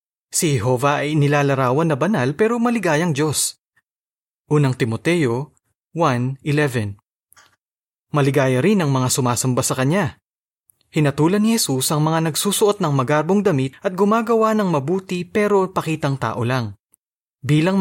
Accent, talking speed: native, 125 wpm